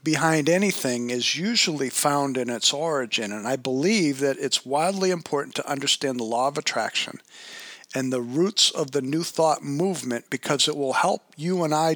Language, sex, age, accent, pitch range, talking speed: English, male, 50-69, American, 130-165 Hz, 180 wpm